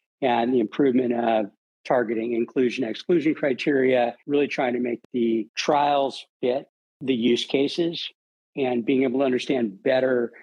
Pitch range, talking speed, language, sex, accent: 120-140 Hz, 130 wpm, English, male, American